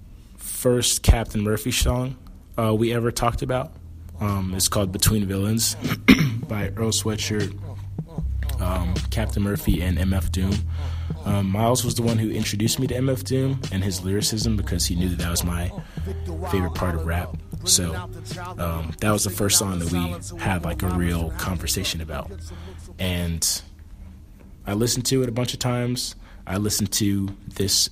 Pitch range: 90-110 Hz